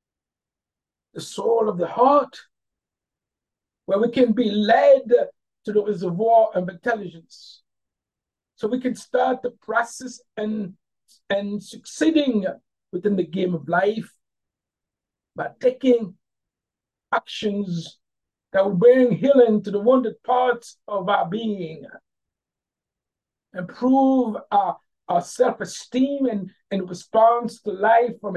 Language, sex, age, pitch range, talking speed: English, male, 60-79, 180-245 Hz, 115 wpm